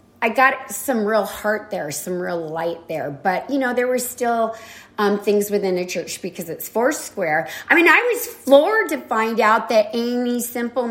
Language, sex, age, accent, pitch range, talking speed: English, female, 30-49, American, 190-255 Hz, 200 wpm